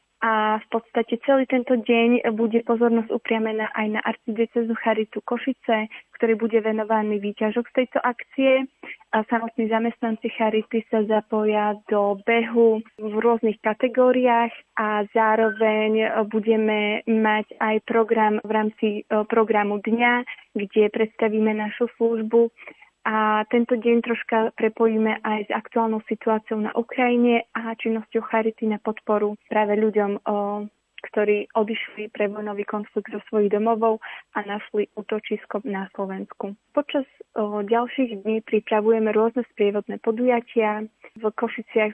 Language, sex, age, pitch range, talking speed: Slovak, female, 20-39, 215-230 Hz, 125 wpm